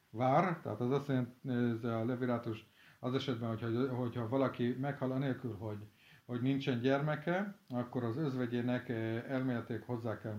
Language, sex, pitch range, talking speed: Hungarian, male, 115-135 Hz, 145 wpm